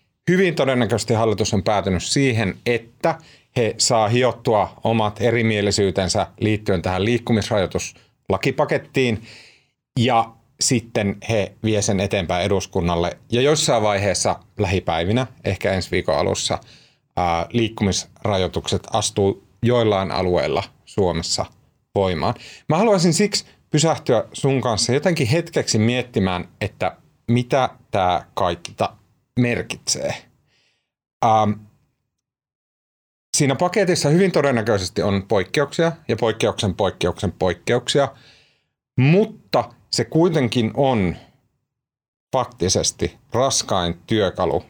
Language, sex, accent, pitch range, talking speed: Finnish, male, native, 100-130 Hz, 90 wpm